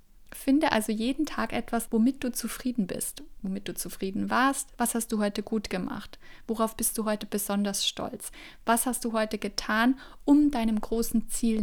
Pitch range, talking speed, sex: 215-255 Hz, 175 wpm, female